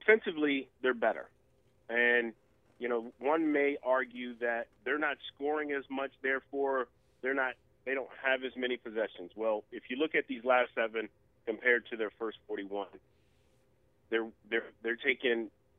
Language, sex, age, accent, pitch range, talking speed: English, male, 30-49, American, 110-145 Hz, 155 wpm